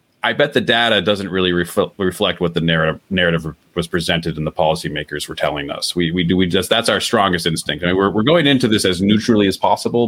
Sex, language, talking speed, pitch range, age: male, English, 230 wpm, 85-100 Hz, 30-49